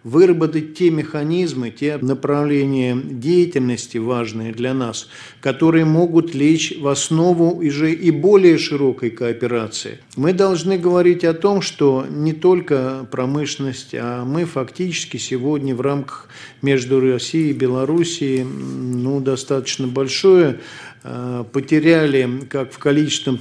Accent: native